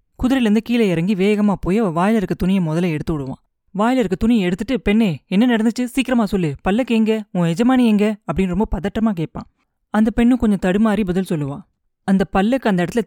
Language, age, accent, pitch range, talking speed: Tamil, 20-39, native, 170-220 Hz, 175 wpm